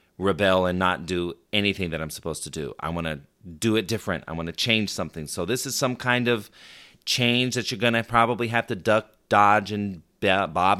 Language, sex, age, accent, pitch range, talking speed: English, male, 30-49, American, 90-115 Hz, 215 wpm